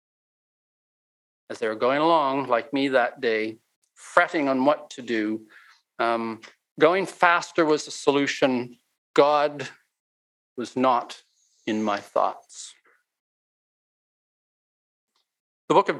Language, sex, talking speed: English, male, 110 wpm